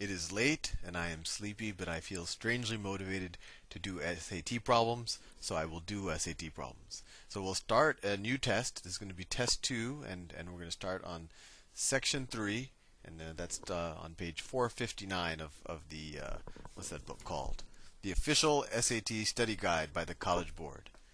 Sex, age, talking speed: male, 30-49, 195 wpm